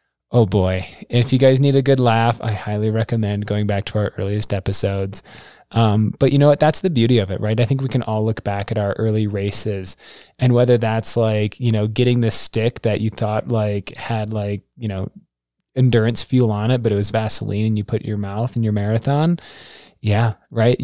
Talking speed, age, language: 215 wpm, 20-39, English